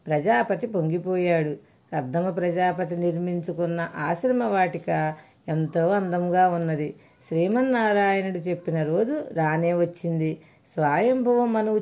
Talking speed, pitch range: 80 wpm, 165-210 Hz